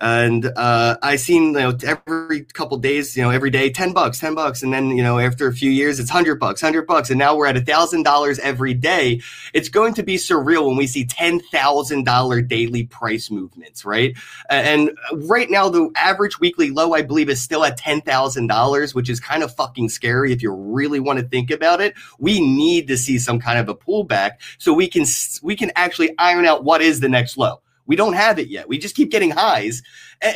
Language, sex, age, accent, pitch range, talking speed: English, male, 30-49, American, 130-180 Hz, 220 wpm